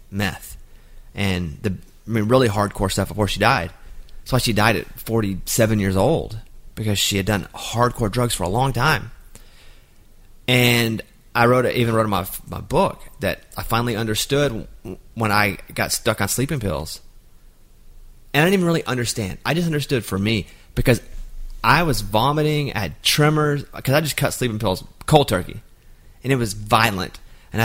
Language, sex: English, male